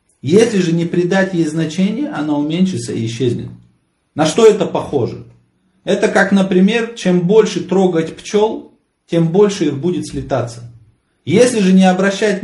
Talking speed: 145 wpm